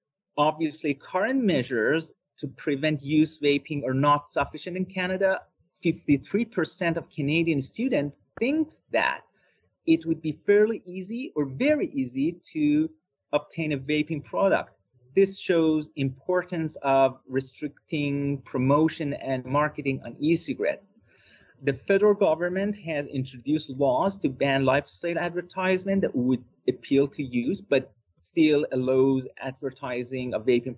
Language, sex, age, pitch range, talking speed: English, male, 30-49, 130-170 Hz, 120 wpm